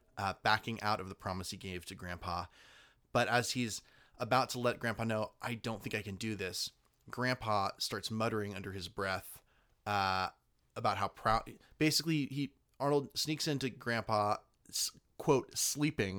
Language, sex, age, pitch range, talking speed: English, male, 30-49, 100-125 Hz, 160 wpm